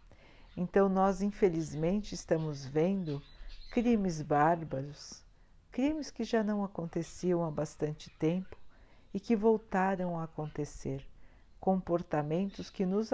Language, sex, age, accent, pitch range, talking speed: Portuguese, female, 50-69, Brazilian, 150-210 Hz, 105 wpm